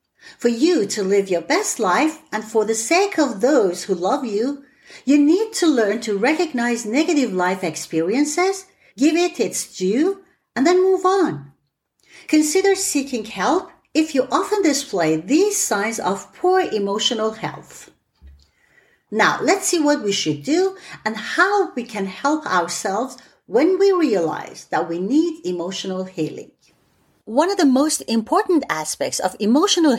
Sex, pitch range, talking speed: female, 205-315 Hz, 150 wpm